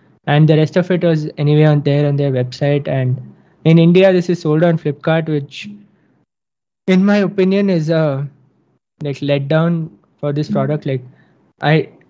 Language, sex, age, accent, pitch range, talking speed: English, male, 20-39, Indian, 140-160 Hz, 165 wpm